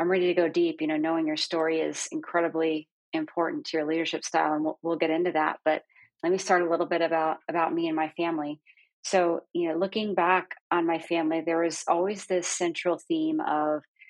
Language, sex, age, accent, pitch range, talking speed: English, female, 30-49, American, 160-180 Hz, 215 wpm